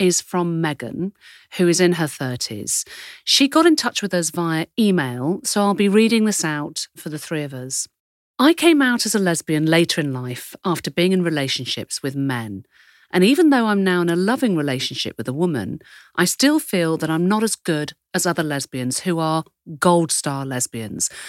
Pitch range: 135-195 Hz